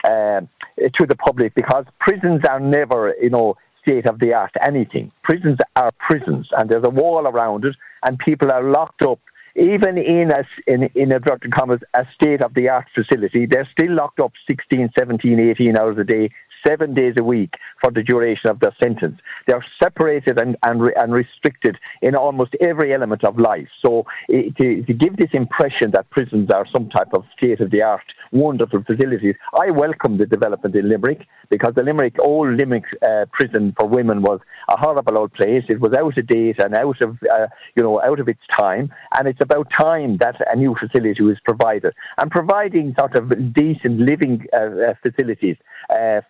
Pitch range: 120-150 Hz